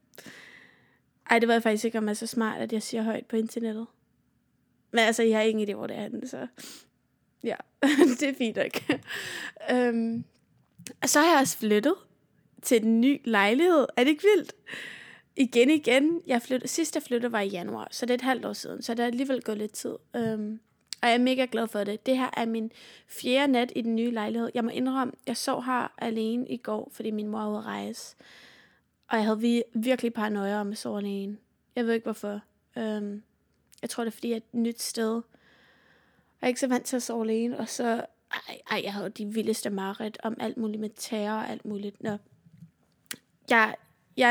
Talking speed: 215 wpm